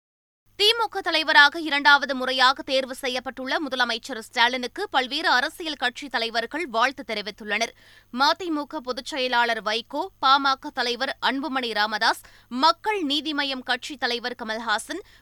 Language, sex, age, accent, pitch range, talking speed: Tamil, female, 20-39, native, 250-310 Hz, 105 wpm